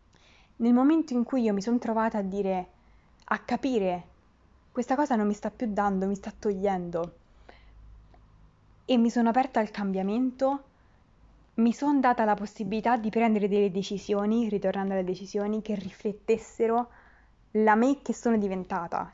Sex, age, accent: female, 20-39, native